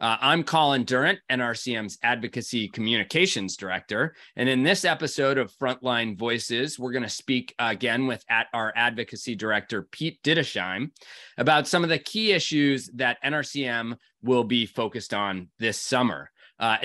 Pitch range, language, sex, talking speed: 115-145 Hz, English, male, 145 wpm